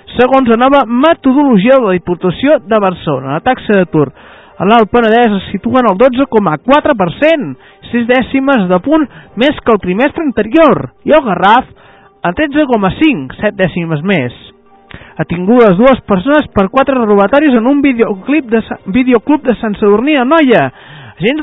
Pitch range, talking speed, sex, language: 200-270 Hz, 150 wpm, male, Spanish